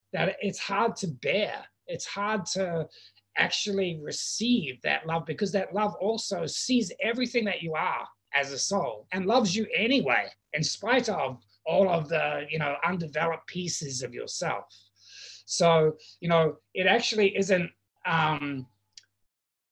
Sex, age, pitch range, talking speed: male, 30-49, 145-195 Hz, 140 wpm